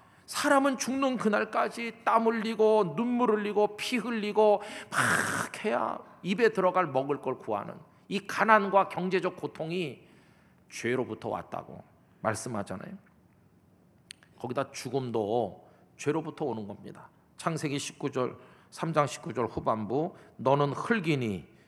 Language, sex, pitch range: Korean, male, 150-210 Hz